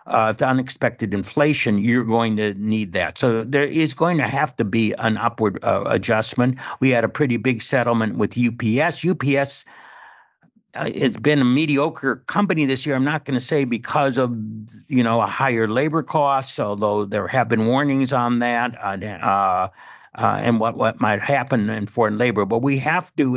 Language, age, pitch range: English, 60-79, 110-135 Hz